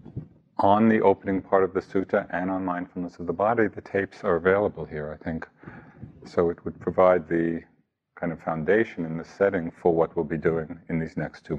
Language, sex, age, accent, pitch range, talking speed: English, male, 50-69, American, 90-140 Hz, 205 wpm